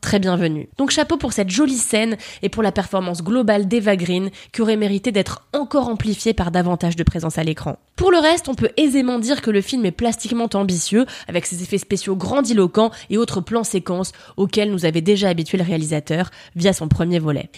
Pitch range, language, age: 190-265 Hz, French, 20-39